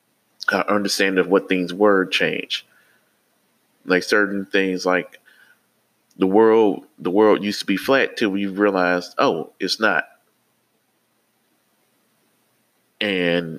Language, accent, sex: English, American, male